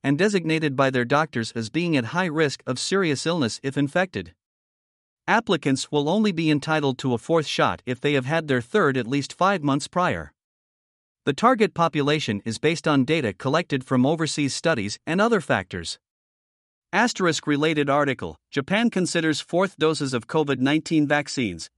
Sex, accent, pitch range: male, American, 130-170 Hz